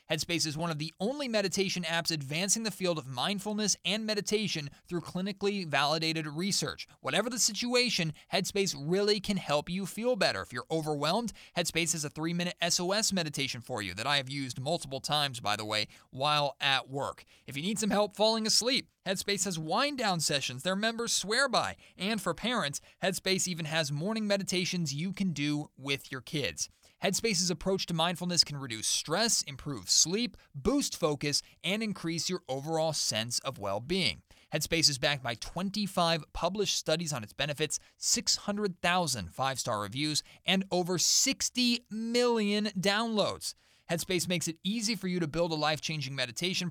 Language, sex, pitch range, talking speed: English, male, 145-200 Hz, 165 wpm